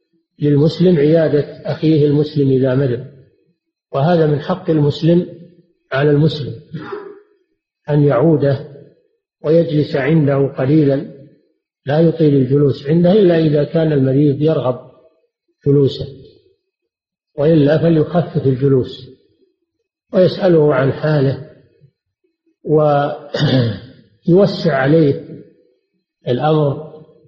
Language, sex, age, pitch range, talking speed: Arabic, male, 50-69, 140-165 Hz, 80 wpm